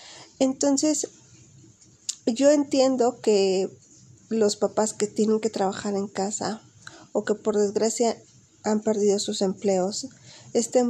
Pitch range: 205-245 Hz